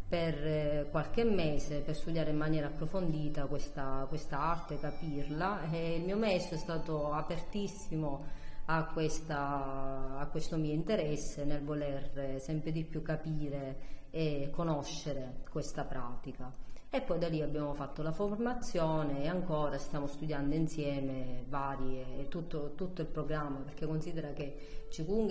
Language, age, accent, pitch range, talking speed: Italian, 30-49, native, 140-160 Hz, 135 wpm